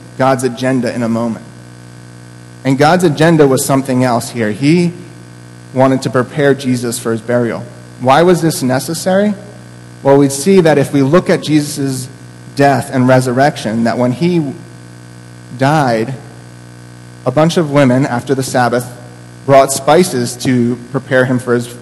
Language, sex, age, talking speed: English, male, 30-49, 150 wpm